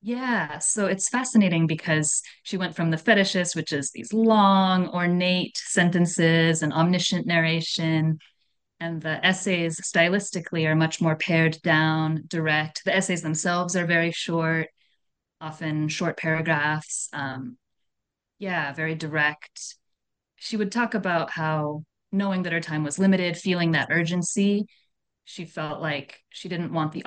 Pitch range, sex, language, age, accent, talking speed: 155-185 Hz, female, English, 30-49, American, 140 wpm